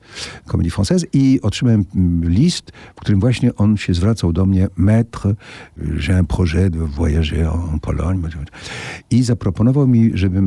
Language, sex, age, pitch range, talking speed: Polish, male, 50-69, 85-110 Hz, 130 wpm